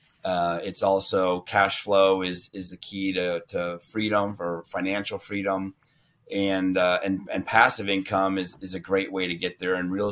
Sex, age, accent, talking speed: male, 30-49, American, 185 wpm